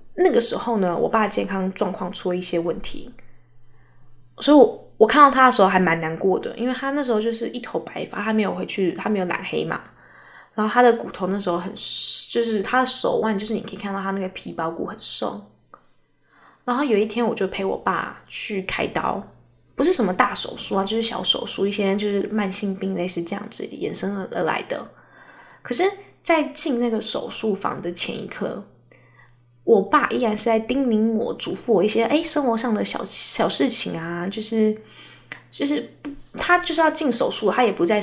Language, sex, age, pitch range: Chinese, female, 10-29, 190-240 Hz